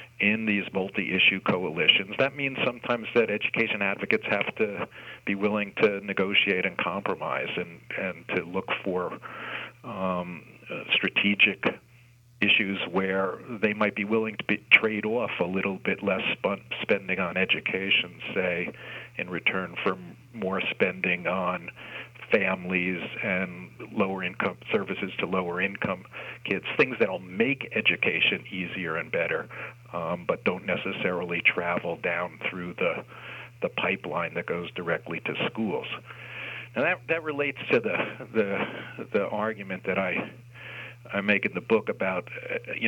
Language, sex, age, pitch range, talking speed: English, male, 50-69, 100-120 Hz, 135 wpm